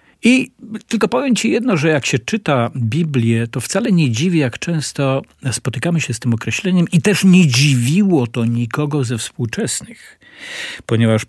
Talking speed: 160 wpm